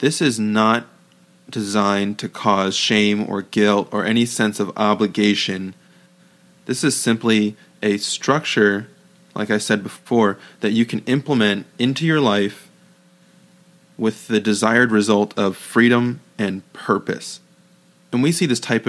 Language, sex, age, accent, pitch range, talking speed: English, male, 20-39, American, 105-120 Hz, 135 wpm